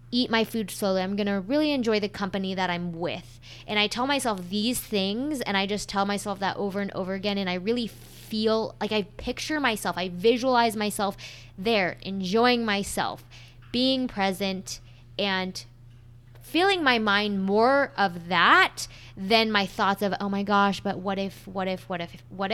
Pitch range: 180-225 Hz